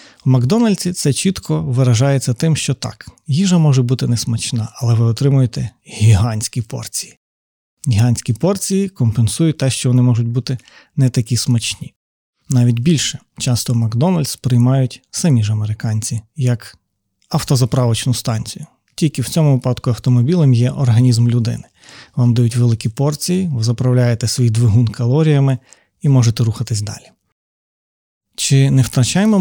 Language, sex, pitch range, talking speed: Ukrainian, male, 115-140 Hz, 130 wpm